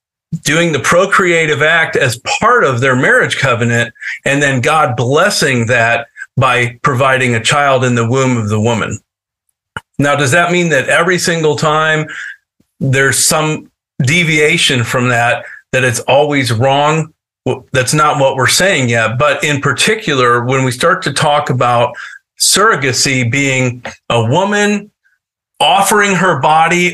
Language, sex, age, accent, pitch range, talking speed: English, male, 40-59, American, 125-155 Hz, 145 wpm